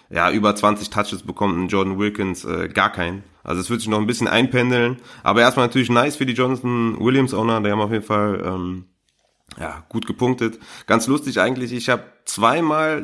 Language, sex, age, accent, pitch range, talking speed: German, male, 30-49, German, 105-125 Hz, 195 wpm